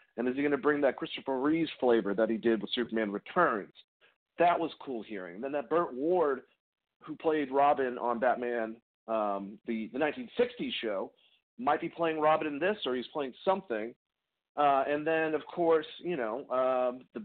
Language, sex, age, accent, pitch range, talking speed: English, male, 40-59, American, 120-165 Hz, 190 wpm